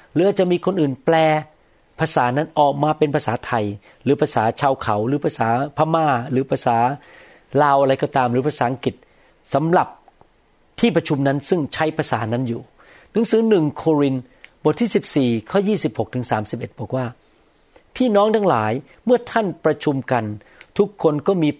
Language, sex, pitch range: Thai, male, 125-165 Hz